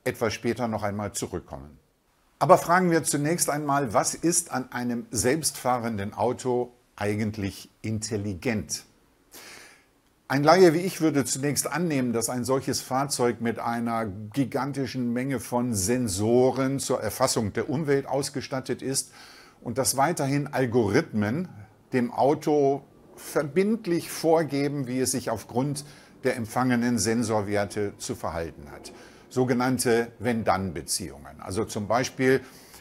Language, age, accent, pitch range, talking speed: German, 50-69, German, 115-140 Hz, 115 wpm